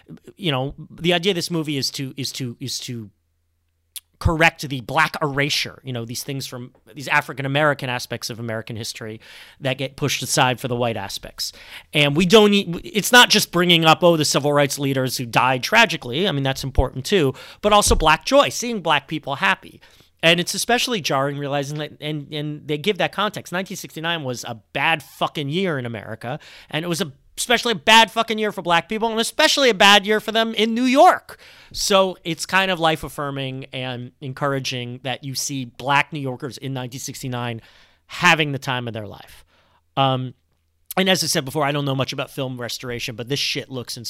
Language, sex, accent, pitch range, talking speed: English, male, American, 125-175 Hz, 200 wpm